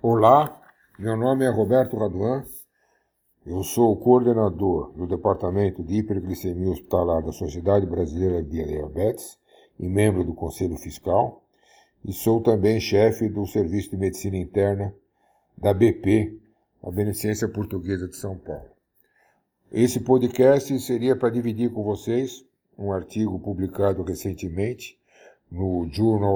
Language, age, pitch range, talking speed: Portuguese, 60-79, 95-110 Hz, 125 wpm